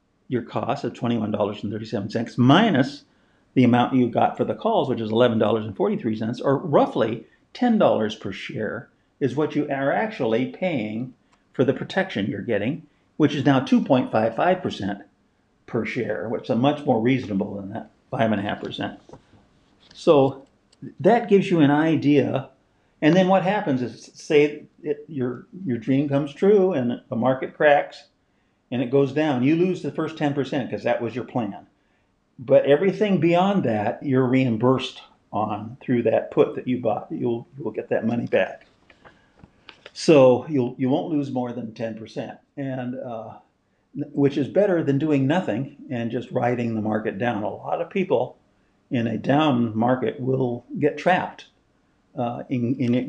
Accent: American